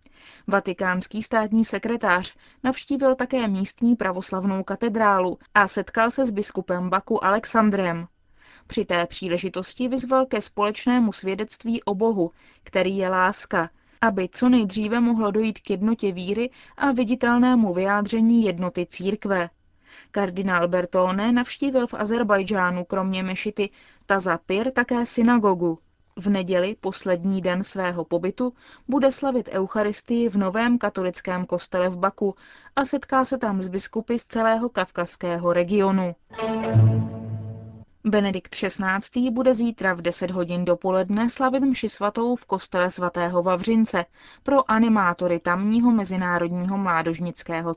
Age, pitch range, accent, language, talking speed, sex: 20-39, 180-230 Hz, native, Czech, 120 wpm, female